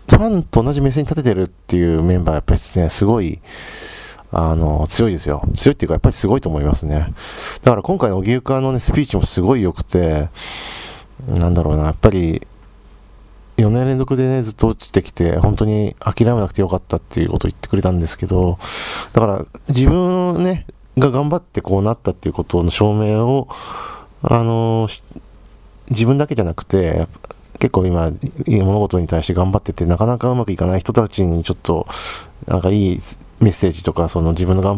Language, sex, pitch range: Japanese, male, 85-115 Hz